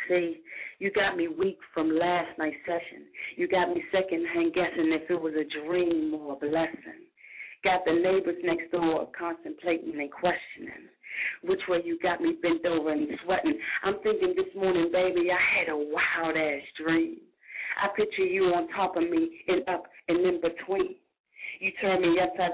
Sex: female